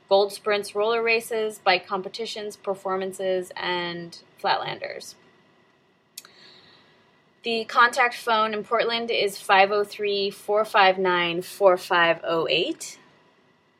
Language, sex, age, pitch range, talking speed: English, female, 20-39, 190-220 Hz, 80 wpm